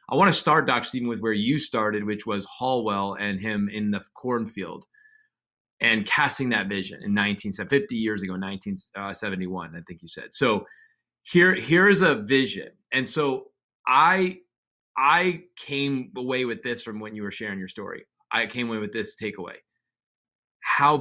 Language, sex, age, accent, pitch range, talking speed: English, male, 30-49, American, 105-145 Hz, 170 wpm